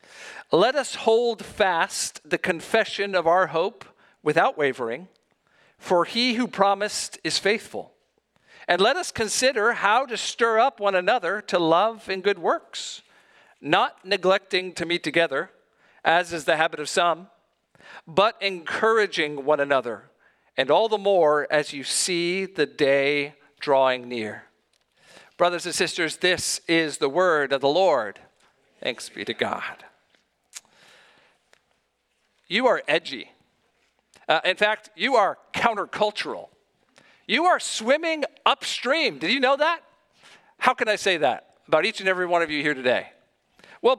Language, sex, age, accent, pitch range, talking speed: English, male, 50-69, American, 160-205 Hz, 140 wpm